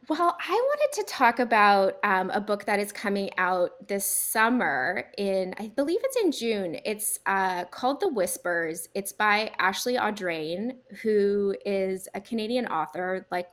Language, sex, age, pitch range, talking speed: English, female, 20-39, 190-230 Hz, 160 wpm